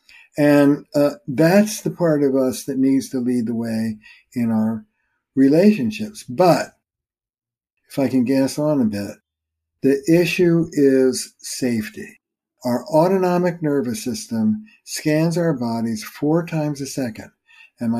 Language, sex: English, male